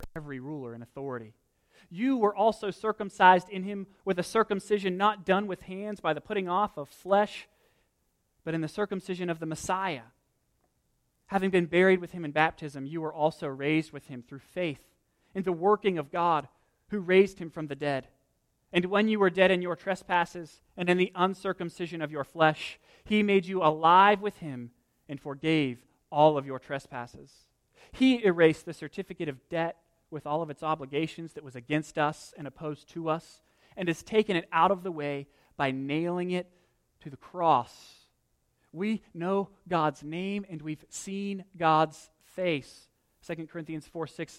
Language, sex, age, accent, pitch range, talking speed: English, male, 30-49, American, 155-195 Hz, 175 wpm